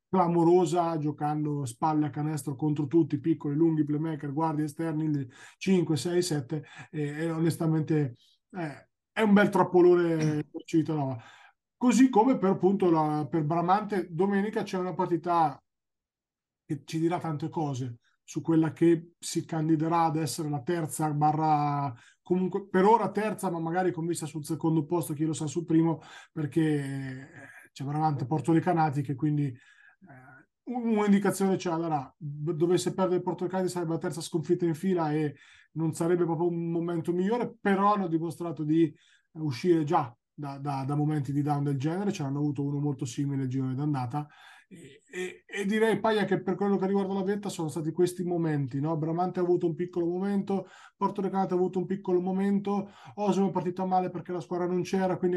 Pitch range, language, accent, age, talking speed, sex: 155-185 Hz, Italian, native, 20-39, 175 wpm, male